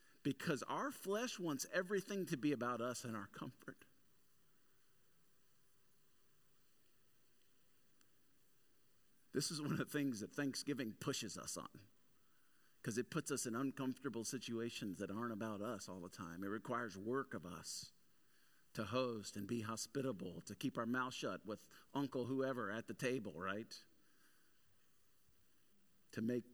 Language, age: English, 50-69